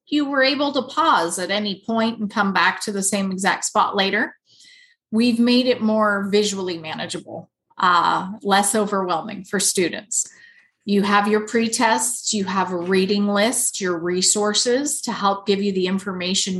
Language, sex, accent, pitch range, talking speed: English, female, American, 195-250 Hz, 165 wpm